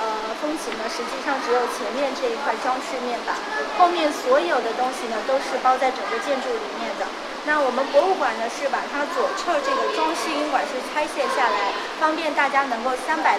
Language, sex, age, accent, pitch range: Chinese, female, 20-39, native, 260-320 Hz